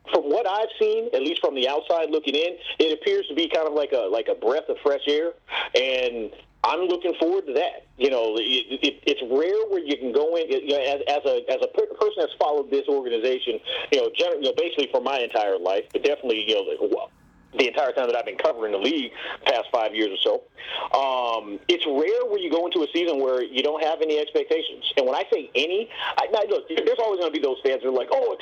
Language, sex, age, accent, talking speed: English, male, 40-59, American, 250 wpm